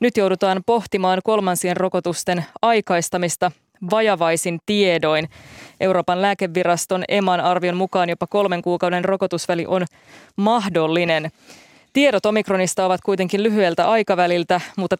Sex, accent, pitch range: female, native, 170-195 Hz